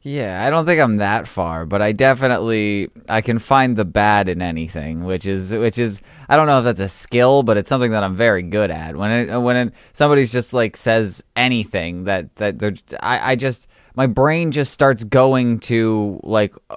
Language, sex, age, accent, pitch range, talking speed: English, male, 20-39, American, 105-130 Hz, 210 wpm